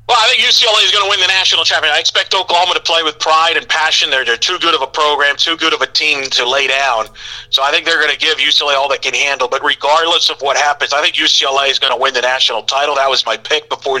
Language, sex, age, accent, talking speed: English, male, 40-59, American, 285 wpm